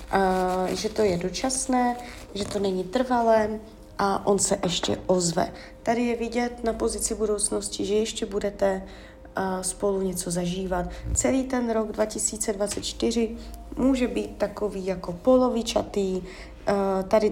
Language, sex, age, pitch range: Czech, female, 30-49, 185-215 Hz